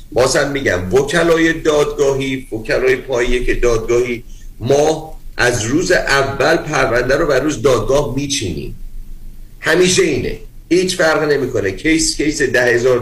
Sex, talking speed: male, 130 wpm